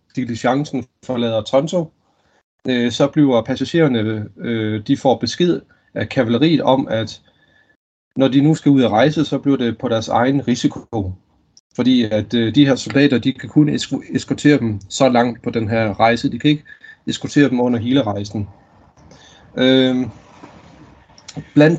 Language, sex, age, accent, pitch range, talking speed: Danish, male, 30-49, native, 110-145 Hz, 150 wpm